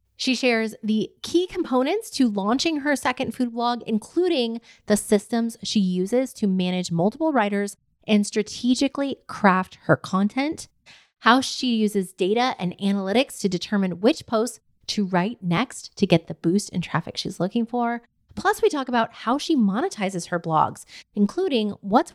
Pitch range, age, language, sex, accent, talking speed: 185-245 Hz, 30-49, English, female, American, 155 wpm